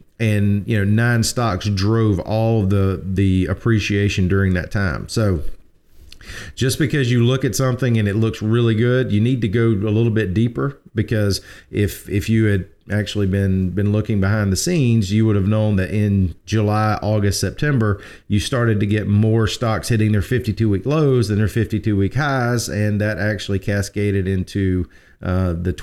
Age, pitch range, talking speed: 40-59, 100-120 Hz, 185 wpm